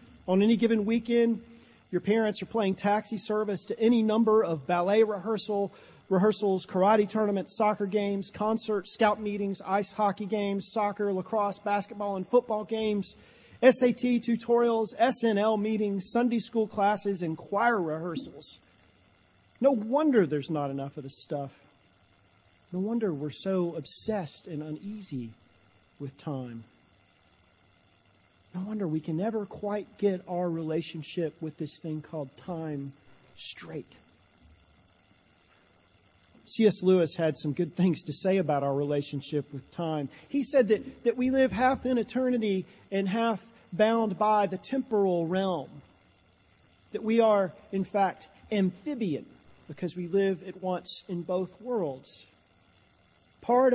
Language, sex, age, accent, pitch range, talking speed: English, male, 40-59, American, 140-215 Hz, 135 wpm